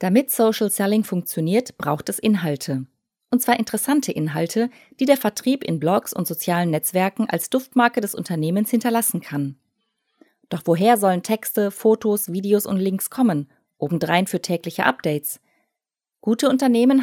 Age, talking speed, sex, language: 20-39, 140 wpm, female, German